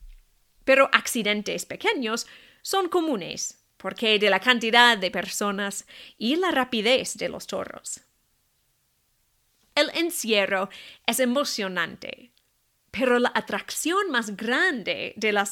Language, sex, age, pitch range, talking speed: English, female, 30-49, 200-280 Hz, 110 wpm